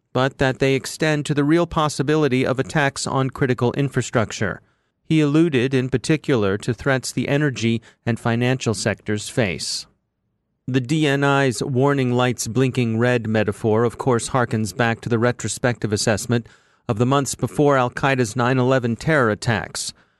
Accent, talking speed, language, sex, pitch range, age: American, 145 wpm, English, male, 115-140 Hz, 30-49